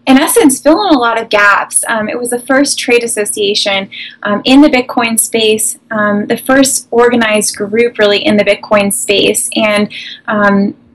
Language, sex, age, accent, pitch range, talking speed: English, female, 20-39, American, 205-260 Hz, 175 wpm